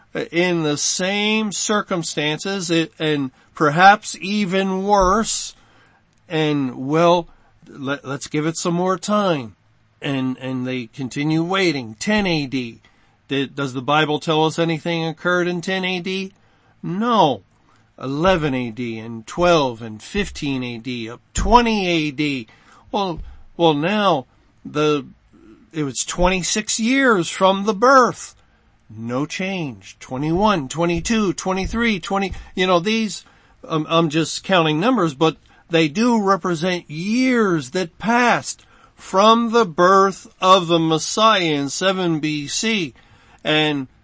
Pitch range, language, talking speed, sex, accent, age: 135-195 Hz, English, 120 wpm, male, American, 50-69